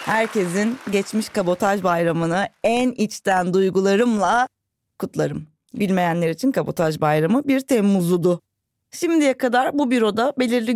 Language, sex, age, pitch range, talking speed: Turkish, female, 30-49, 165-245 Hz, 105 wpm